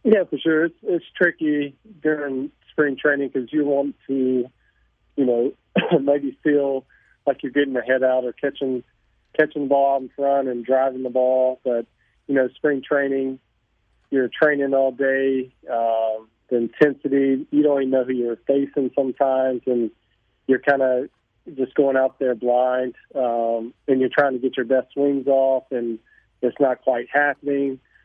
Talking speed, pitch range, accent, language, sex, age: 165 wpm, 125-140 Hz, American, English, male, 40-59